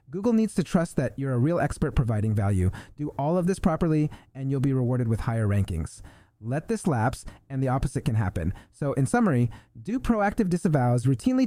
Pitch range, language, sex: 130-195 Hz, English, male